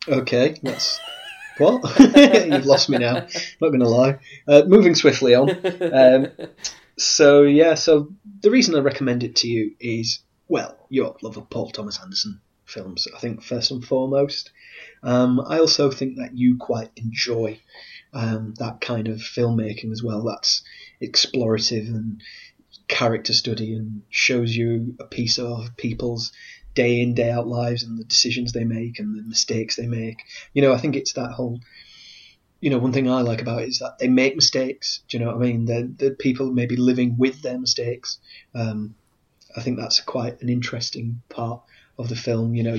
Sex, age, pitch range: male, 30-49, 115-130 Hz